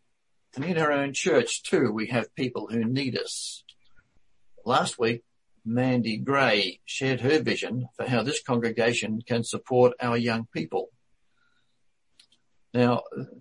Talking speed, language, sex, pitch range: 130 wpm, English, male, 115-135 Hz